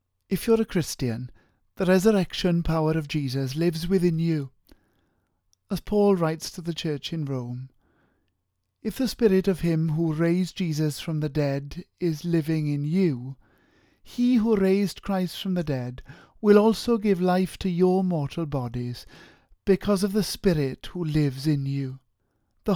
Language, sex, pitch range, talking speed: English, male, 130-190 Hz, 155 wpm